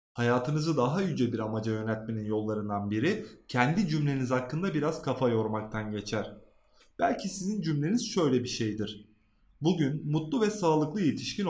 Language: Turkish